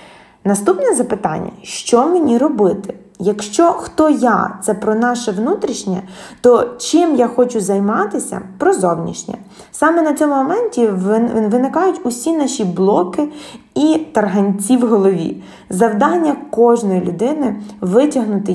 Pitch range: 195-255 Hz